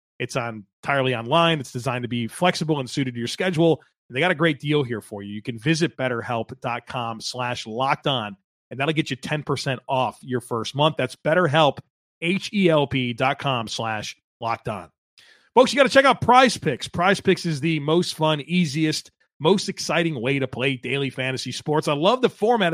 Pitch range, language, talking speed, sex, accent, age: 130-175 Hz, English, 185 wpm, male, American, 30-49